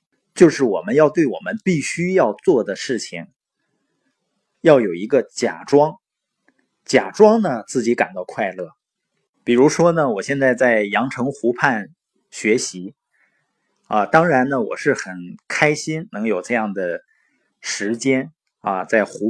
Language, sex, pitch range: Chinese, male, 120-185 Hz